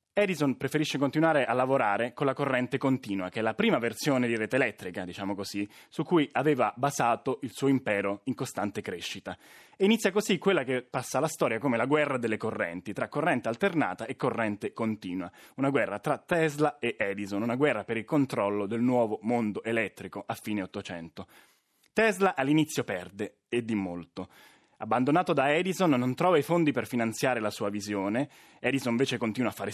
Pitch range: 105-145 Hz